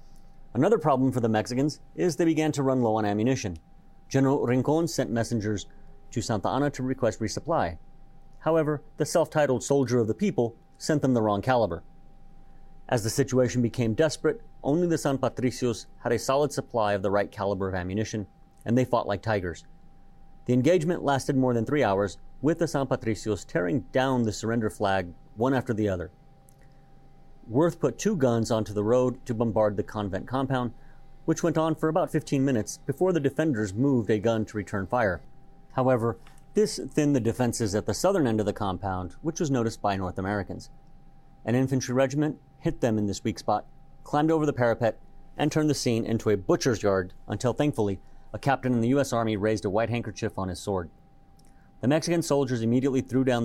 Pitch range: 110-140 Hz